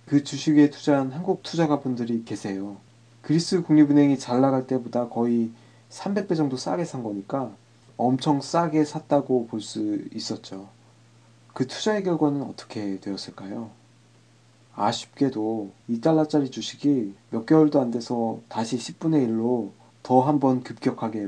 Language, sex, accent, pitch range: Korean, male, native, 115-150 Hz